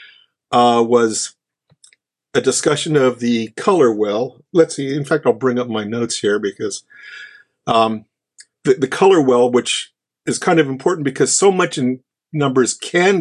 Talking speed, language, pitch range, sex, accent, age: 160 wpm, English, 125-175 Hz, male, American, 50-69